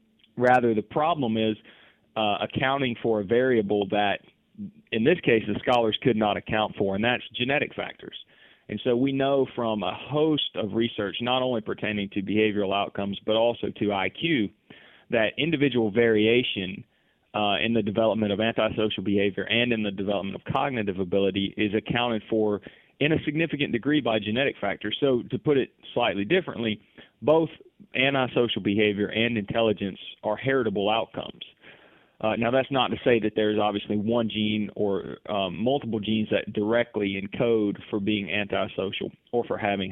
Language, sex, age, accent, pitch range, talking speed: English, male, 30-49, American, 105-120 Hz, 160 wpm